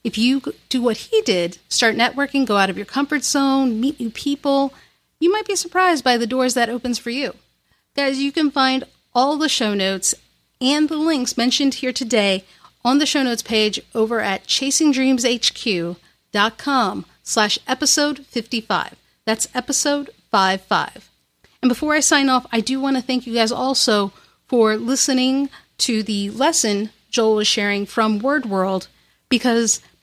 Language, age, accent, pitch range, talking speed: English, 40-59, American, 215-265 Hz, 165 wpm